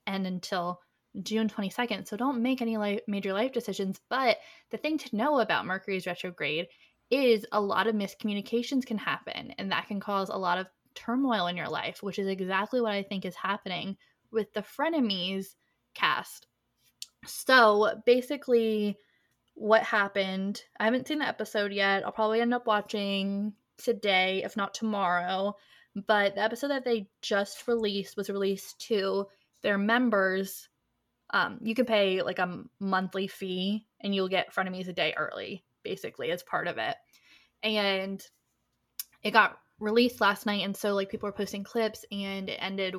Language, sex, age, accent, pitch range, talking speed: English, female, 10-29, American, 190-225 Hz, 165 wpm